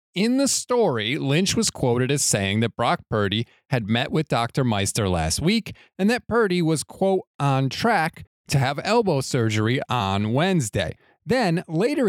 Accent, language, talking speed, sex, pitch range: American, English, 165 wpm, male, 115-165 Hz